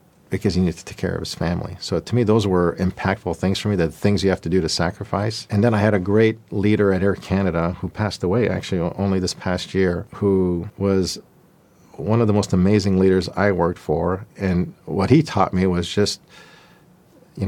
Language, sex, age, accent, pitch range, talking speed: English, male, 50-69, American, 95-110 Hz, 215 wpm